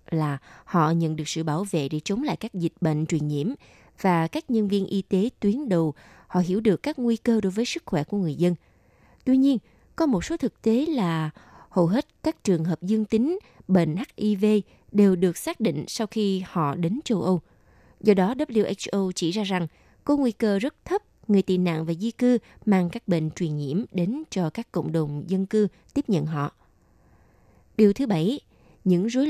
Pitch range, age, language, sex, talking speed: 165-220 Hz, 20-39, Vietnamese, female, 205 wpm